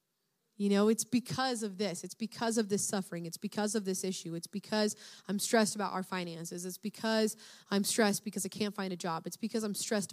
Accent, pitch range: American, 190-230 Hz